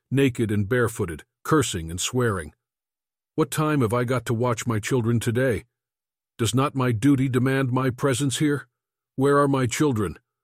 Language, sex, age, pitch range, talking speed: English, male, 50-69, 120-140 Hz, 160 wpm